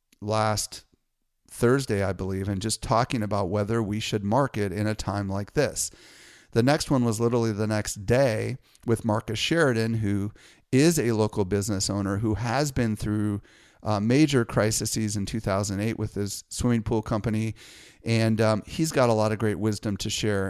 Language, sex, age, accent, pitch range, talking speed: English, male, 40-59, American, 105-115 Hz, 175 wpm